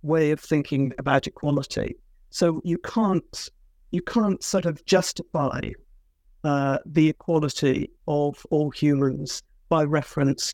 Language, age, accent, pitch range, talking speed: English, 50-69, British, 145-180 Hz, 120 wpm